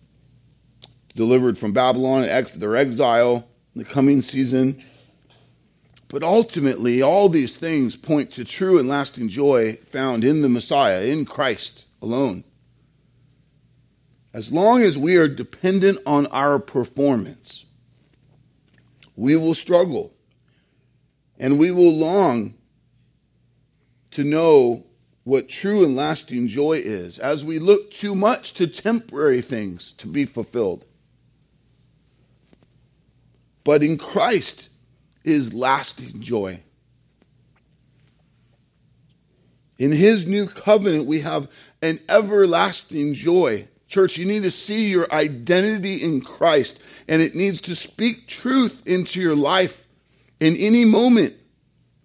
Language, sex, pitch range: English, male, 130-180 Hz